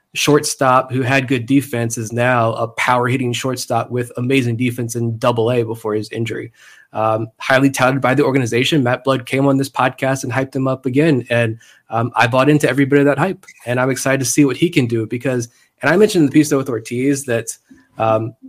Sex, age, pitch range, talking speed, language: male, 20-39, 115-140 Hz, 215 wpm, English